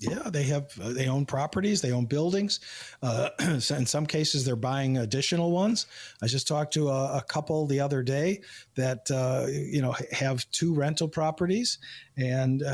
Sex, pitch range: male, 125-150 Hz